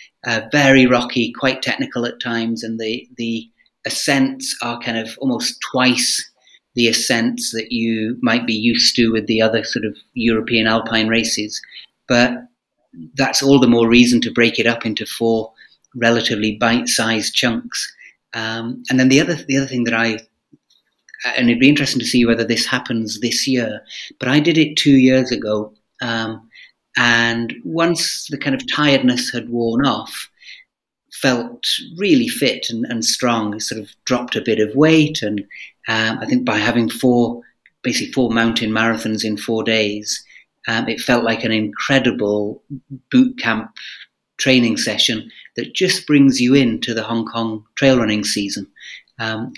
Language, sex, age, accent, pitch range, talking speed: English, male, 30-49, British, 110-130 Hz, 160 wpm